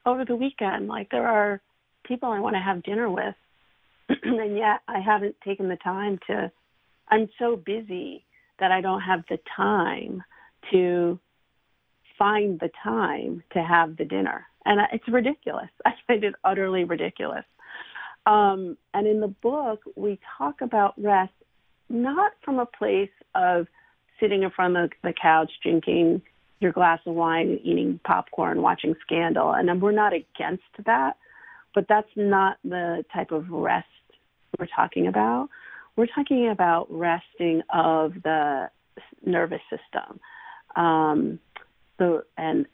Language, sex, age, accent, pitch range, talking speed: English, female, 40-59, American, 170-215 Hz, 145 wpm